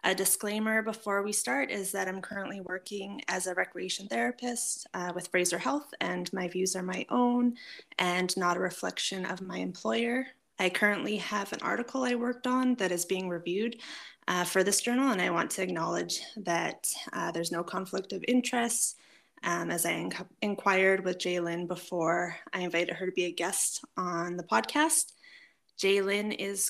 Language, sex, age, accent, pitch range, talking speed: English, female, 20-39, American, 185-235 Hz, 180 wpm